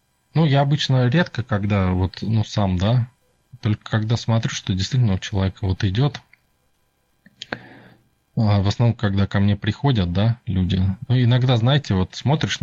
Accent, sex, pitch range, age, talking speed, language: native, male, 95-125 Hz, 20-39, 145 wpm, Russian